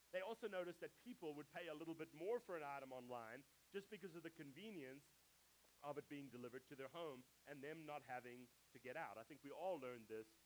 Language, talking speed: English, 230 wpm